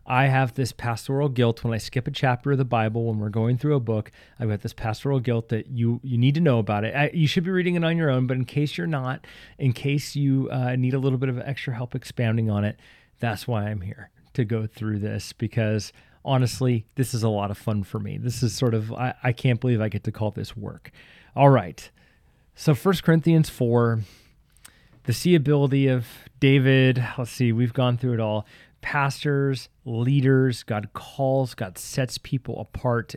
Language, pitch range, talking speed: English, 115-145 Hz, 210 wpm